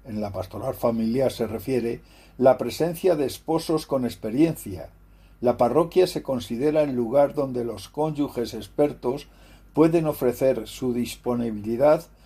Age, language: 60-79, Spanish